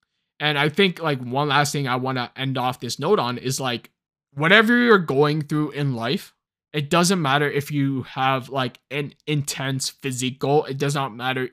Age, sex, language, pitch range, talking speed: 20-39, male, English, 135-170 Hz, 195 wpm